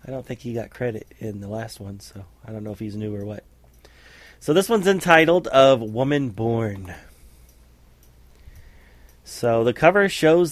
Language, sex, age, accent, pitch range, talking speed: English, male, 30-49, American, 110-130 Hz, 170 wpm